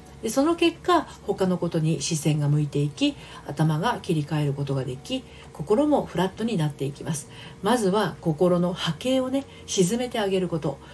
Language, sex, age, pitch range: Japanese, female, 40-59, 140-215 Hz